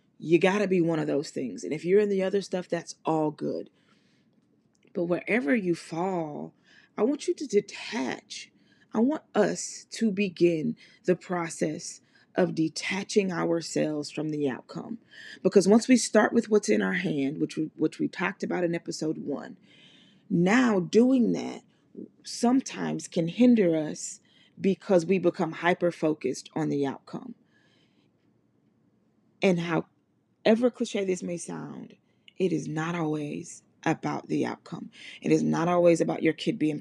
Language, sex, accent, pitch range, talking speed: English, female, American, 155-195 Hz, 155 wpm